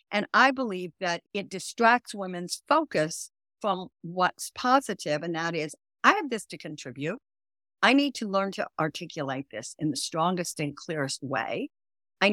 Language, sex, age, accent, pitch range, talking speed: English, female, 60-79, American, 165-230 Hz, 160 wpm